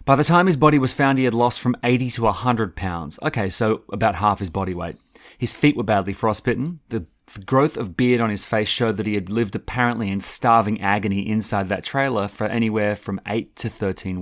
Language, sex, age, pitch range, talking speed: English, male, 30-49, 100-130 Hz, 220 wpm